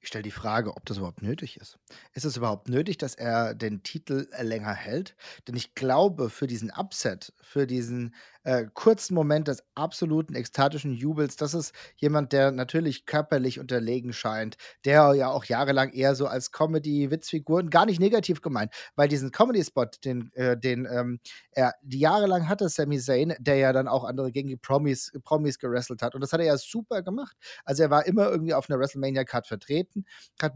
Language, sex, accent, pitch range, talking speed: German, male, German, 130-165 Hz, 185 wpm